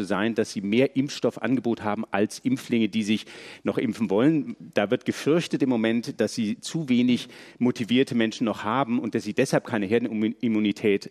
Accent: German